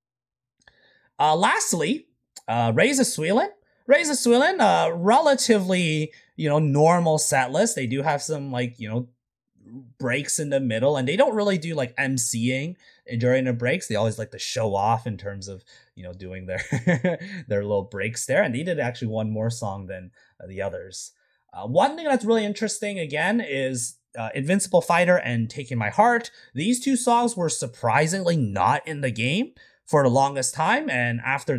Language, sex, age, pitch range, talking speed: English, male, 30-49, 110-180 Hz, 175 wpm